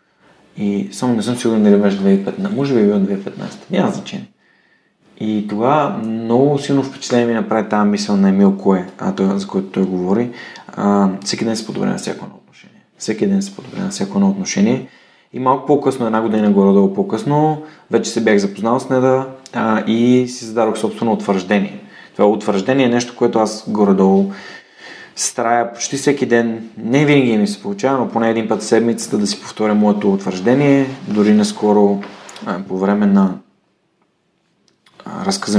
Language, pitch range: Bulgarian, 100-130 Hz